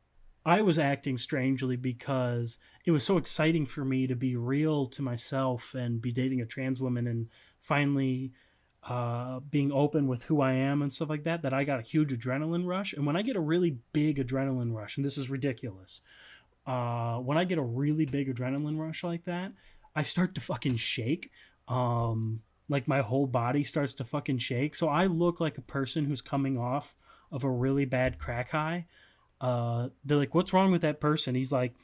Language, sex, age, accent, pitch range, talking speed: English, male, 30-49, American, 125-155 Hz, 200 wpm